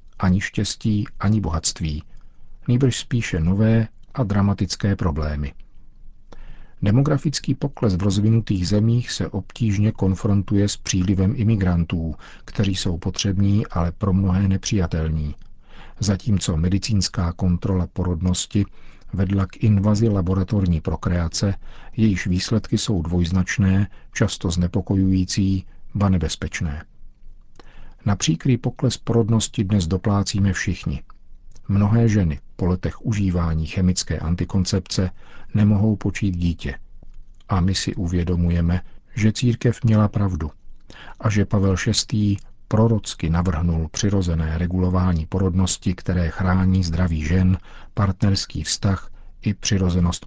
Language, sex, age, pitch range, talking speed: Czech, male, 50-69, 90-105 Hz, 105 wpm